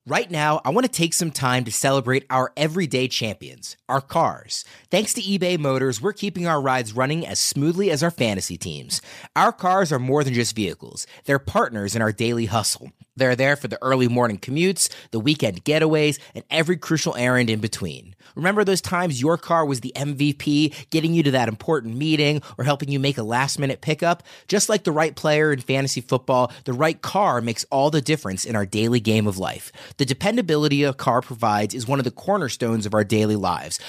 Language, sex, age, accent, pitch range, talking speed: English, male, 30-49, American, 125-155 Hz, 205 wpm